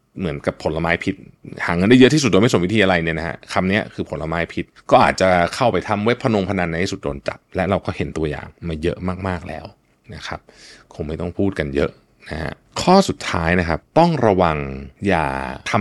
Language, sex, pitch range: Thai, male, 80-120 Hz